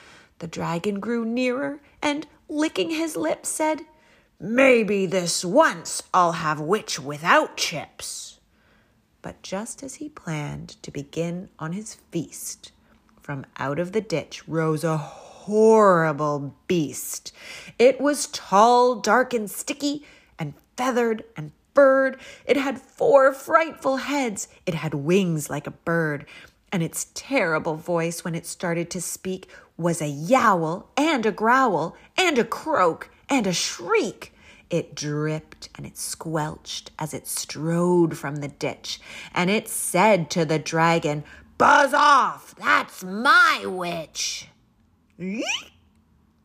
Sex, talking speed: female, 130 wpm